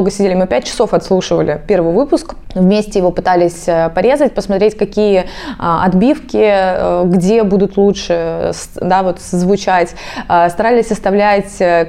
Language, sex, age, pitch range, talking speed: Russian, female, 20-39, 180-230 Hz, 110 wpm